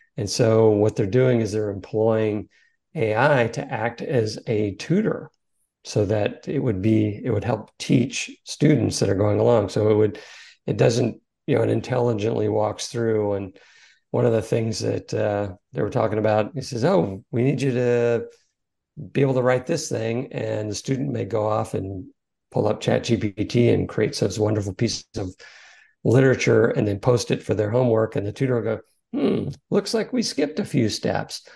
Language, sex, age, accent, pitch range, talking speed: English, male, 50-69, American, 105-135 Hz, 190 wpm